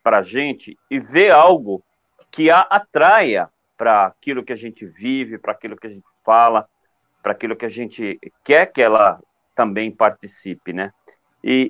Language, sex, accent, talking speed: Portuguese, male, Brazilian, 165 wpm